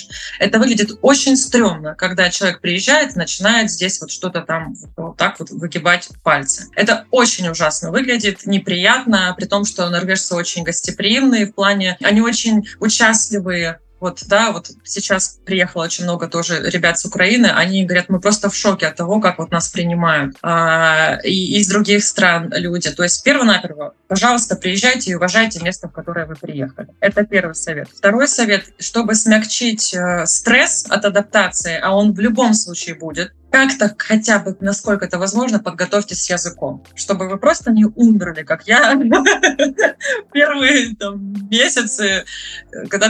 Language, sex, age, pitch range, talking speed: Russian, female, 20-39, 175-230 Hz, 150 wpm